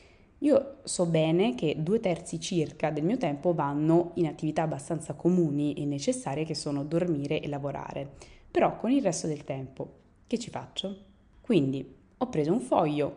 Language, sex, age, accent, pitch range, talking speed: Italian, female, 20-39, native, 145-175 Hz, 165 wpm